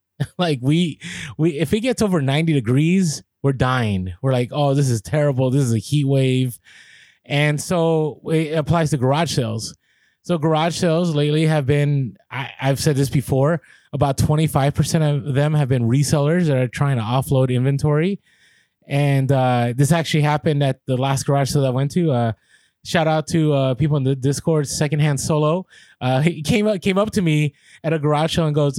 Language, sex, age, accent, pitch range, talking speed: English, male, 20-39, American, 140-165 Hz, 190 wpm